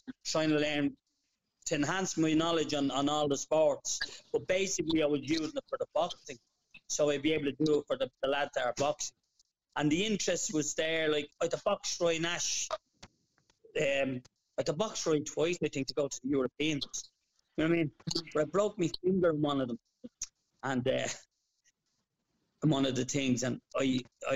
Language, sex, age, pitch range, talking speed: English, male, 30-49, 145-175 Hz, 200 wpm